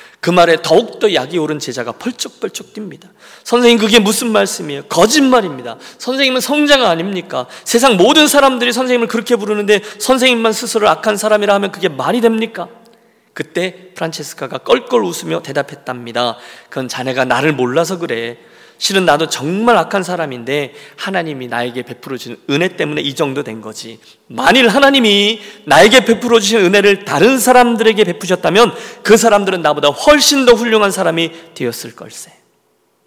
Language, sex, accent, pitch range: Korean, male, native, 145-230 Hz